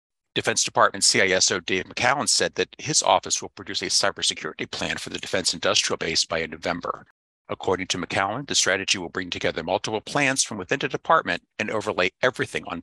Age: 50-69